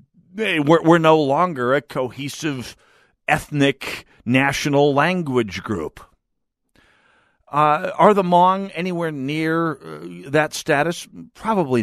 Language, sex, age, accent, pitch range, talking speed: English, male, 50-69, American, 110-165 Hz, 90 wpm